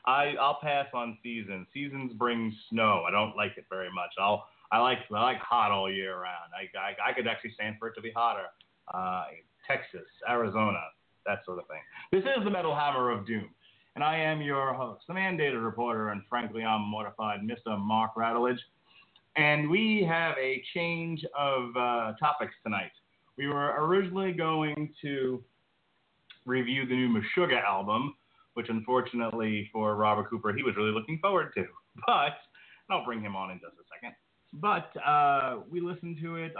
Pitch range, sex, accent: 110-145 Hz, male, American